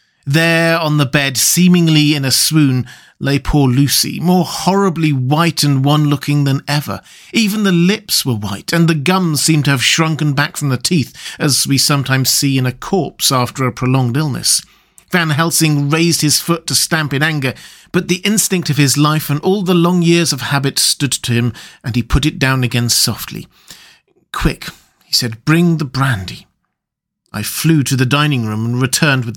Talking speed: 190 wpm